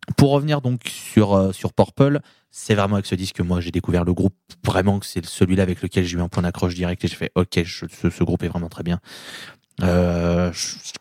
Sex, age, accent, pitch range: male, 20-39, French, 90-105 Hz